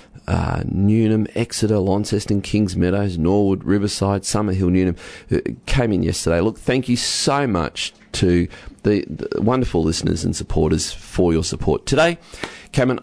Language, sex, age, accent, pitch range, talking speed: English, male, 40-59, Australian, 90-115 Hz, 140 wpm